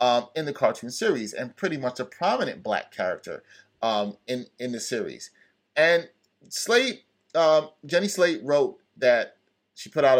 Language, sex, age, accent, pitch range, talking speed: English, male, 30-49, American, 110-160 Hz, 160 wpm